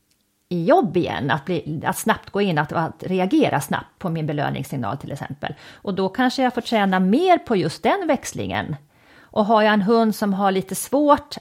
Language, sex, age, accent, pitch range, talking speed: Swedish, female, 40-59, native, 160-215 Hz, 195 wpm